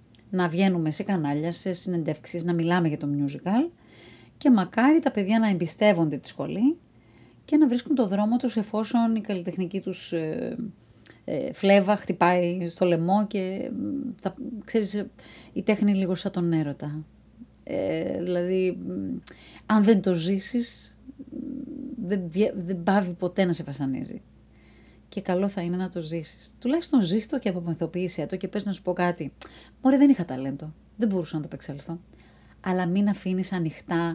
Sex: female